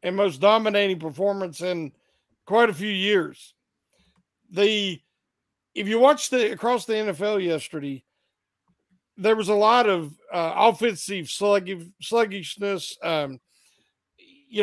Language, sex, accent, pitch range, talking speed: English, male, American, 185-230 Hz, 120 wpm